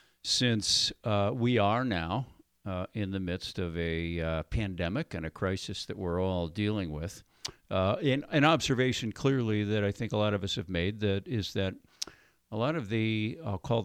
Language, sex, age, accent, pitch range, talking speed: English, male, 50-69, American, 95-120 Hz, 185 wpm